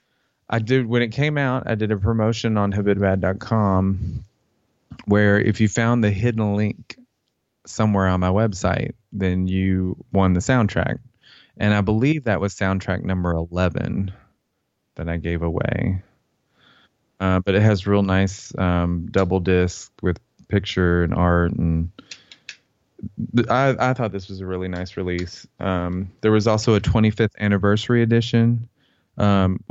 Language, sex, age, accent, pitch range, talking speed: English, male, 20-39, American, 90-110 Hz, 145 wpm